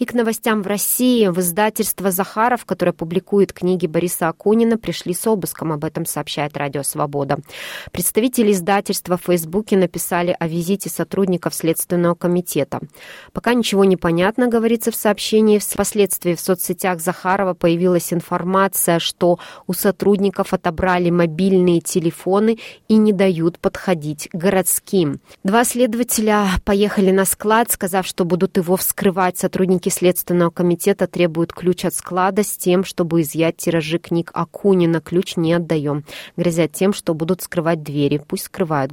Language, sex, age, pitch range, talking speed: Russian, female, 20-39, 165-195 Hz, 140 wpm